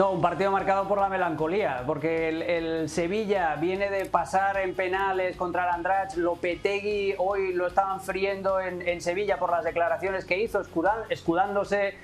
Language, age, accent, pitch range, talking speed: Spanish, 30-49, Spanish, 165-195 Hz, 165 wpm